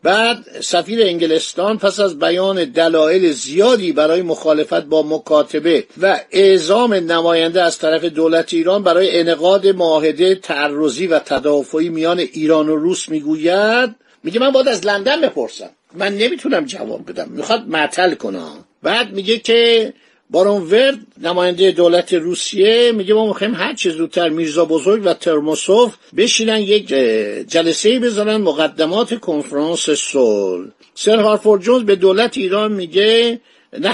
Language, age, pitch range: Persian, 50-69, 160-220 Hz